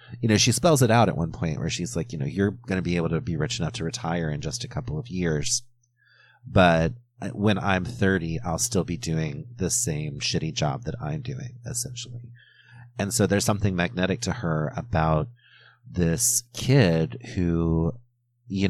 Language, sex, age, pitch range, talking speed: English, male, 30-49, 90-120 Hz, 190 wpm